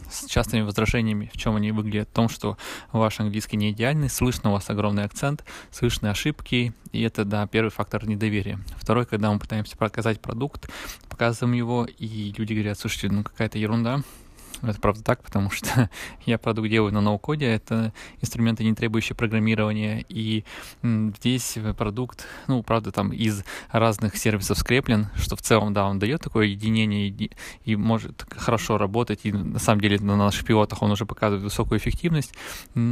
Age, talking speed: 20-39, 165 wpm